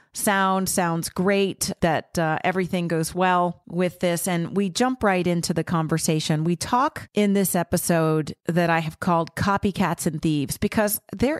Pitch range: 170-205 Hz